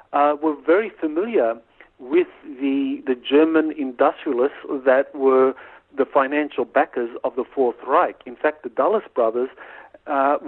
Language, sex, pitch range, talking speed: English, male, 130-165 Hz, 135 wpm